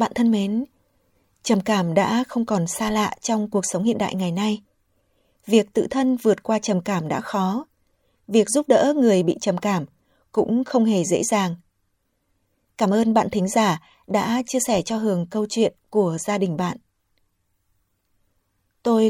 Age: 20-39